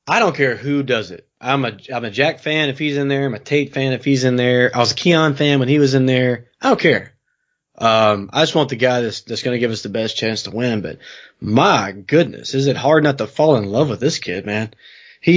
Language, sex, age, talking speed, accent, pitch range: English, male, 20-39, 275 wpm, American, 115-150 Hz